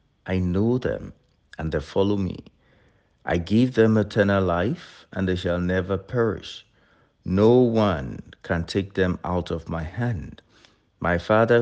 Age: 60-79